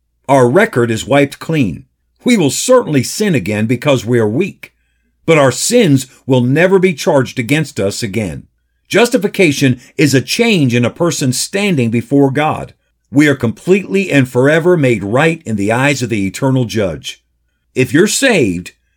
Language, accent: English, American